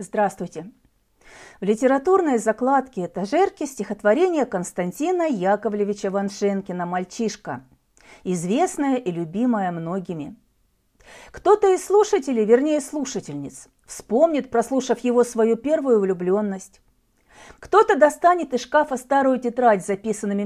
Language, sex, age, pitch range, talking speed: Russian, female, 40-59, 200-280 Hz, 95 wpm